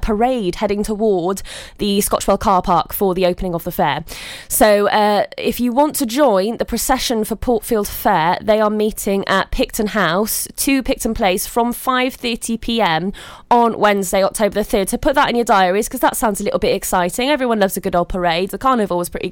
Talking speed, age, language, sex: 200 wpm, 20-39, English, female